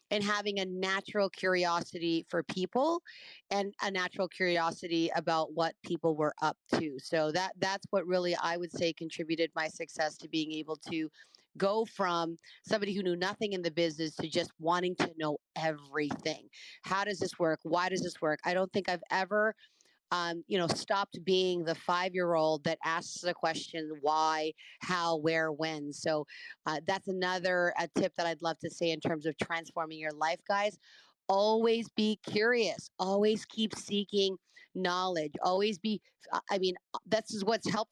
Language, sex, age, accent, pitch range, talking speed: English, female, 30-49, American, 170-210 Hz, 170 wpm